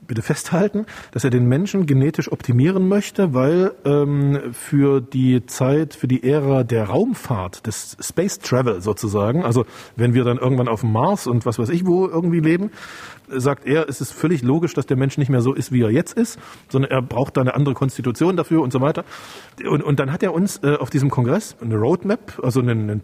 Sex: male